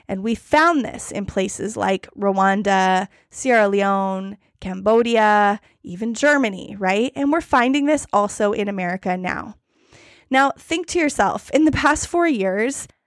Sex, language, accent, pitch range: female, English, American, 205-265 Hz